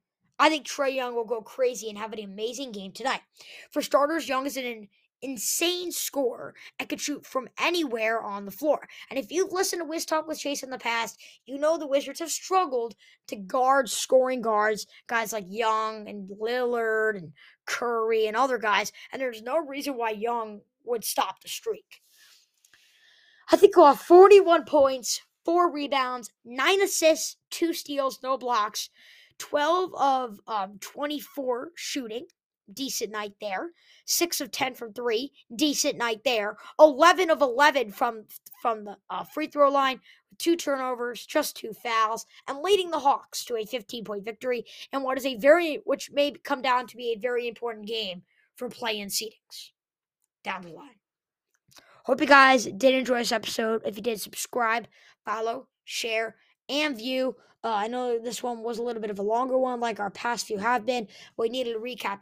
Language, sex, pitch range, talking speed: English, female, 225-290 Hz, 175 wpm